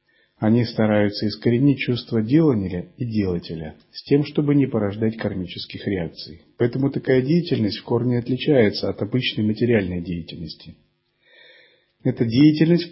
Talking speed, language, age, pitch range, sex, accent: 125 wpm, Russian, 40-59, 110-155 Hz, male, native